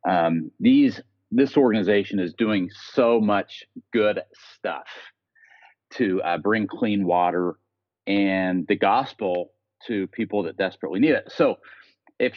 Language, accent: English, American